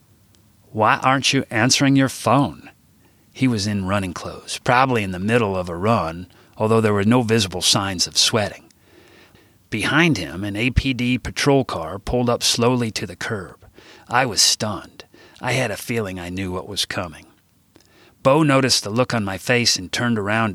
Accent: American